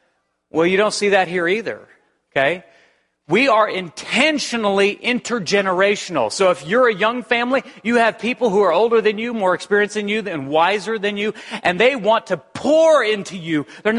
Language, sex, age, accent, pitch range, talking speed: English, male, 40-59, American, 150-220 Hz, 180 wpm